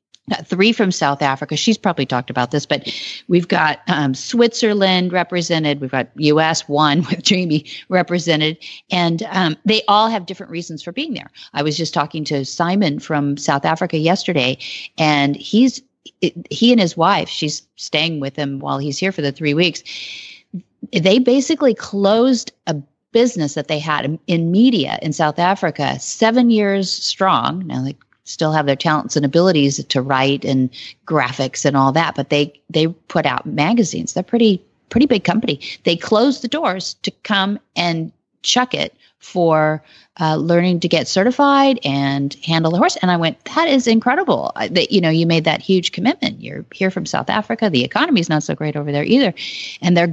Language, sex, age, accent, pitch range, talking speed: English, female, 40-59, American, 150-210 Hz, 180 wpm